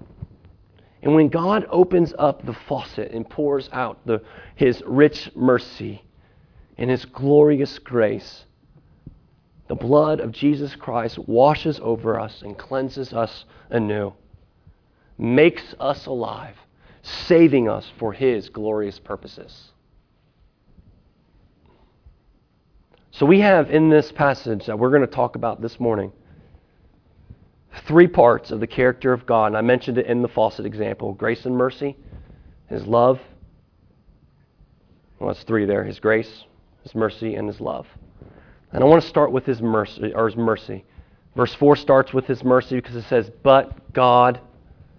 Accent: American